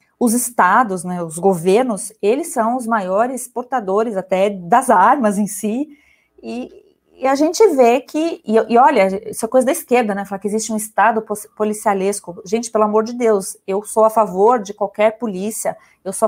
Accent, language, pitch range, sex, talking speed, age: Brazilian, English, 205-255 Hz, female, 185 wpm, 30-49